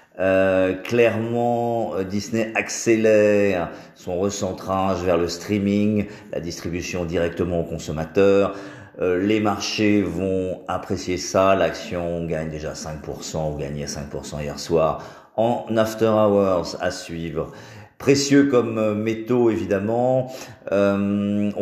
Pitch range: 80-105 Hz